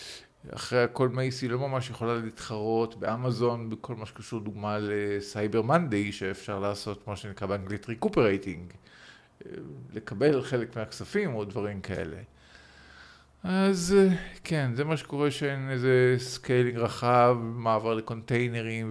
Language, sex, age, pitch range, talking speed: Hebrew, male, 50-69, 115-170 Hz, 115 wpm